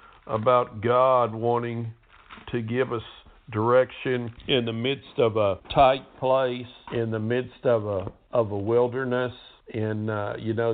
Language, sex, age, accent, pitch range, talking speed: English, male, 50-69, American, 110-125 Hz, 145 wpm